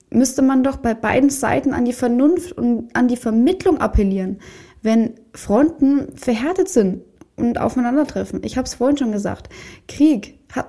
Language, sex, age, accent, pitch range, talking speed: German, female, 20-39, German, 215-270 Hz, 155 wpm